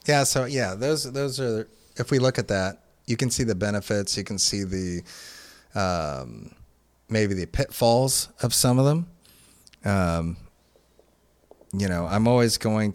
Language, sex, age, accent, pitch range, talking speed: English, male, 30-49, American, 85-110 Hz, 160 wpm